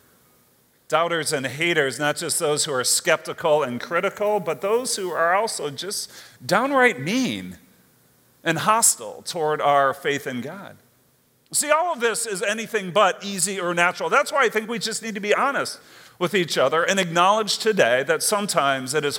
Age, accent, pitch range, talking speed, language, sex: 40-59, American, 135-195 Hz, 175 wpm, English, male